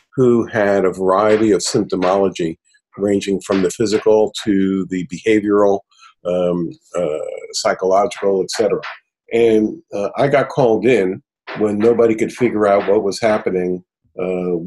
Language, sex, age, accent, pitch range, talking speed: English, male, 50-69, American, 100-125 Hz, 135 wpm